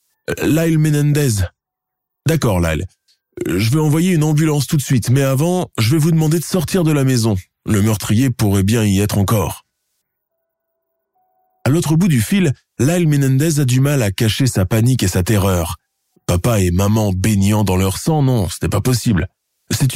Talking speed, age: 180 wpm, 20-39